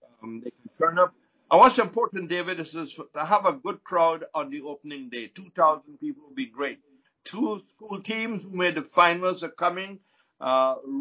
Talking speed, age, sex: 185 wpm, 60-79, male